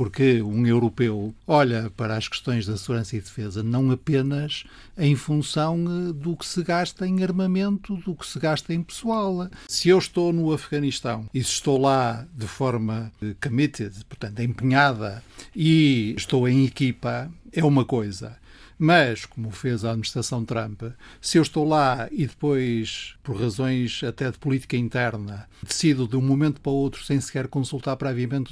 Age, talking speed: 60-79, 160 wpm